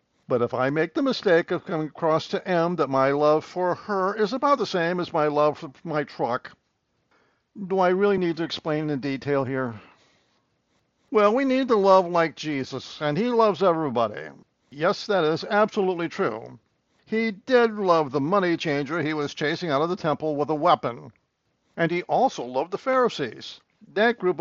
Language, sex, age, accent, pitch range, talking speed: English, male, 60-79, American, 140-195 Hz, 185 wpm